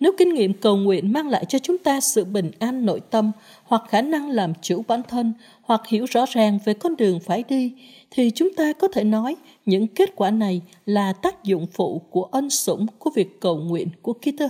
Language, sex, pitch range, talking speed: Vietnamese, female, 200-260 Hz, 225 wpm